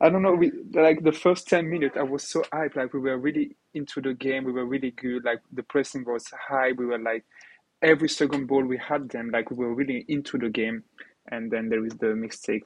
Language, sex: English, male